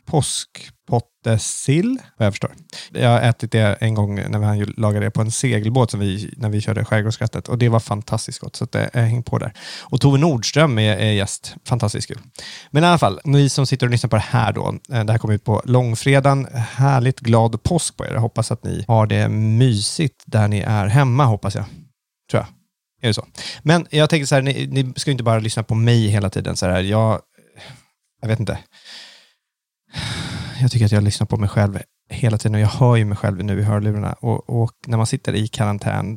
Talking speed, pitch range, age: 215 wpm, 105-125 Hz, 30-49